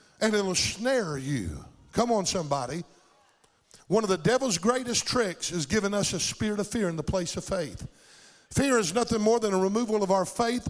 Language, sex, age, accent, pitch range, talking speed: English, male, 50-69, American, 190-225 Hz, 195 wpm